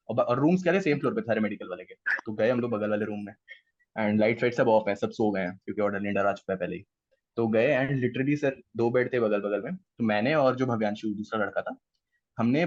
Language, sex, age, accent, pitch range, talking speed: Hindi, male, 20-39, native, 110-160 Hz, 235 wpm